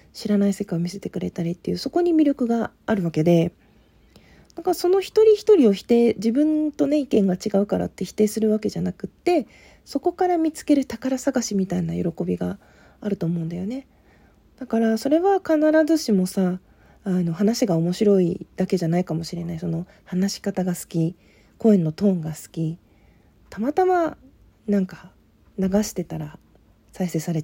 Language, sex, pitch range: Japanese, female, 175-270 Hz